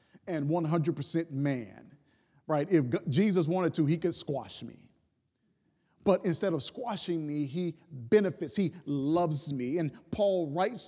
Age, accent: 40-59, American